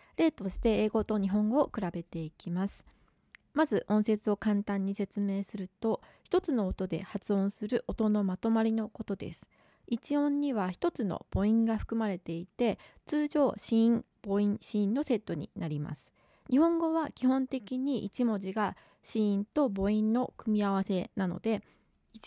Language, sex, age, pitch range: Japanese, female, 20-39, 190-245 Hz